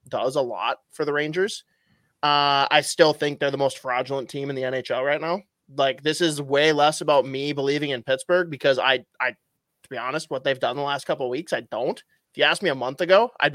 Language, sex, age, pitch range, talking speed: English, male, 20-39, 135-160 Hz, 240 wpm